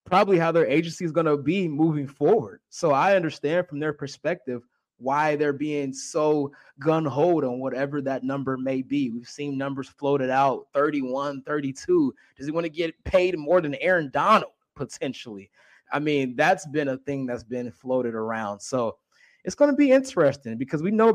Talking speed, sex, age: 180 wpm, male, 20-39